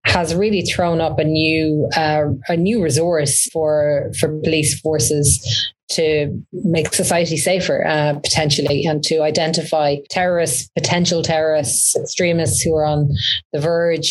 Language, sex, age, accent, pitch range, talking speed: English, female, 30-49, Irish, 155-175 Hz, 135 wpm